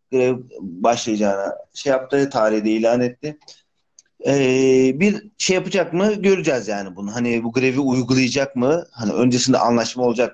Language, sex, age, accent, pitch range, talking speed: Turkish, male, 40-59, native, 115-145 Hz, 135 wpm